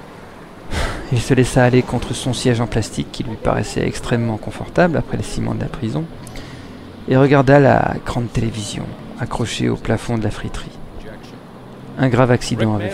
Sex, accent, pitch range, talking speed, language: male, French, 115-140 Hz, 160 wpm, French